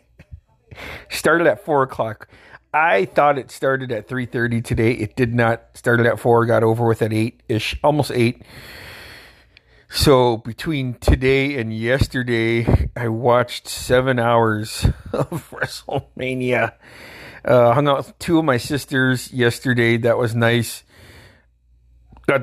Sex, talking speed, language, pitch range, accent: male, 130 wpm, English, 110-125 Hz, American